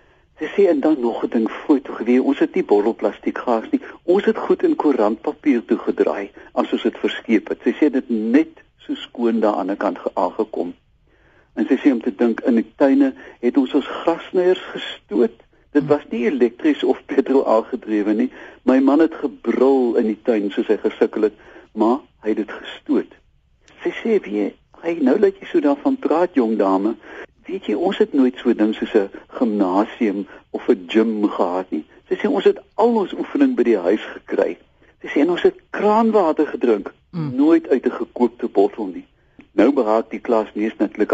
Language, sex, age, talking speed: Dutch, male, 60-79, 190 wpm